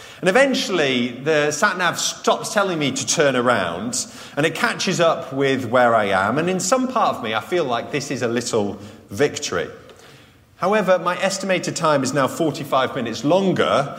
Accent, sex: British, male